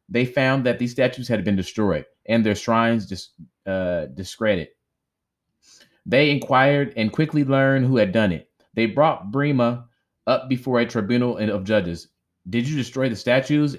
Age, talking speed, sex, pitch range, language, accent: 30-49, 160 wpm, male, 105-135 Hz, English, American